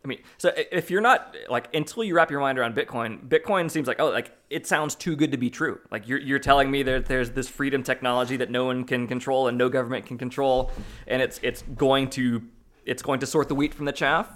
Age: 20-39